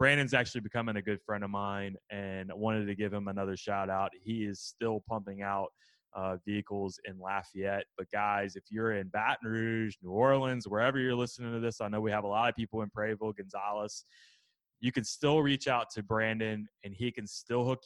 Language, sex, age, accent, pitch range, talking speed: English, male, 20-39, American, 100-120 Hz, 210 wpm